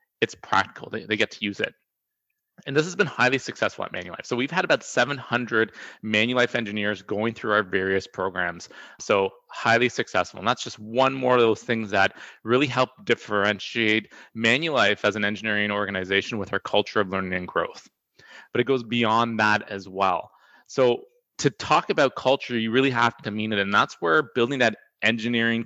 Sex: male